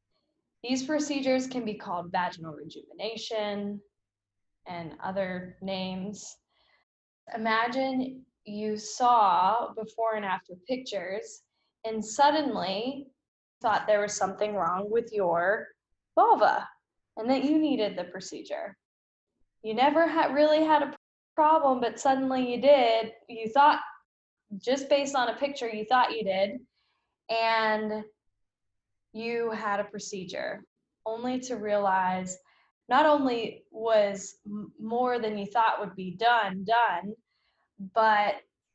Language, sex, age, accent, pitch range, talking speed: English, female, 10-29, American, 200-255 Hz, 115 wpm